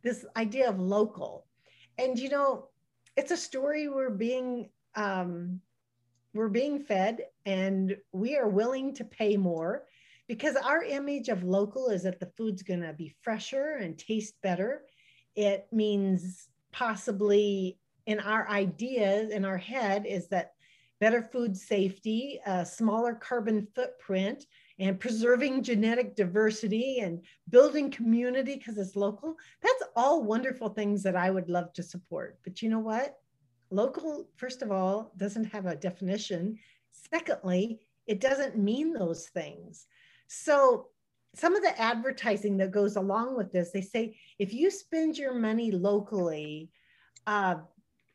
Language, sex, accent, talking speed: English, female, American, 140 wpm